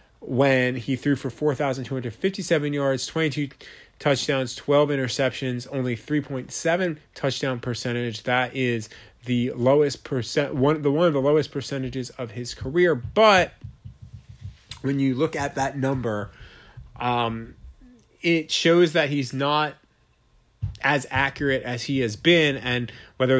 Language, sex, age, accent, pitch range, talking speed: English, male, 30-49, American, 120-150 Hz, 145 wpm